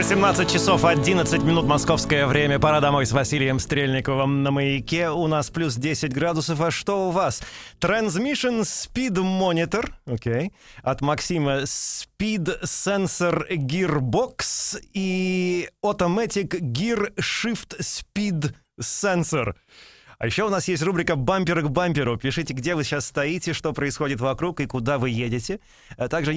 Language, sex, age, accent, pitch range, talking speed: Russian, male, 30-49, native, 135-175 Hz, 135 wpm